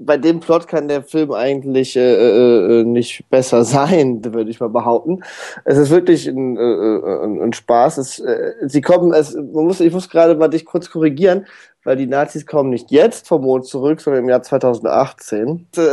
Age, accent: 20-39, German